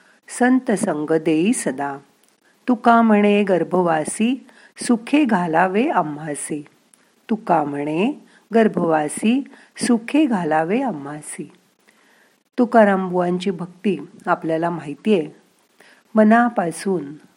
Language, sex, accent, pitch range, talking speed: Marathi, female, native, 160-215 Hz, 75 wpm